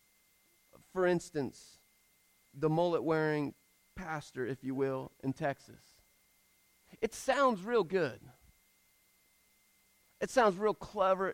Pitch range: 180-245 Hz